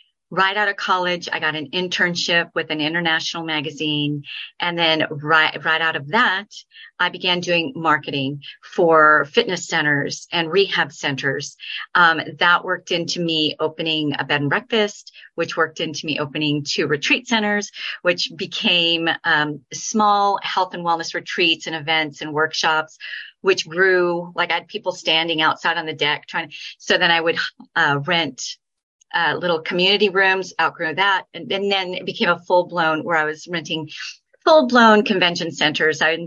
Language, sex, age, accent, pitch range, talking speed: English, female, 40-59, American, 155-185 Hz, 165 wpm